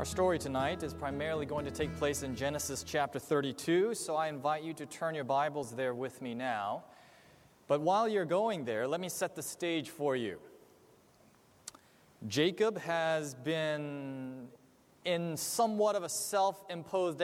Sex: male